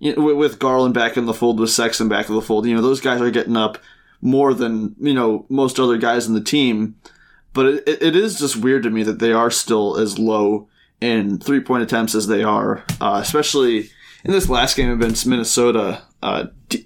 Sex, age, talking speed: male, 20-39, 220 wpm